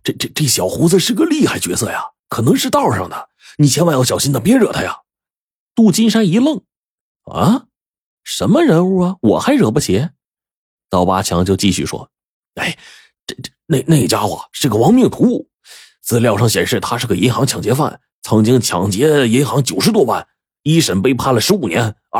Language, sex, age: Chinese, male, 30-49